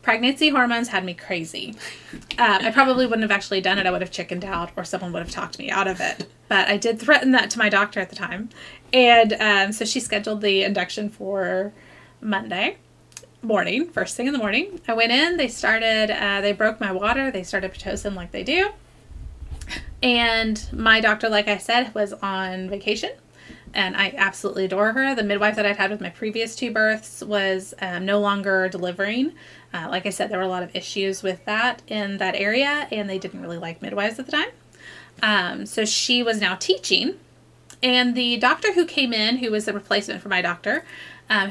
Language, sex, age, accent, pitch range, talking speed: English, female, 30-49, American, 195-235 Hz, 205 wpm